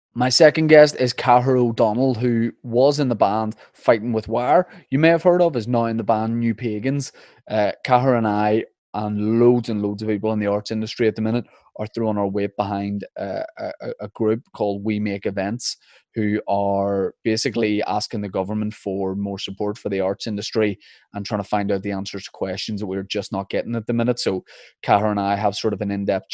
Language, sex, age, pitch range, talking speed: English, male, 20-39, 100-115 Hz, 215 wpm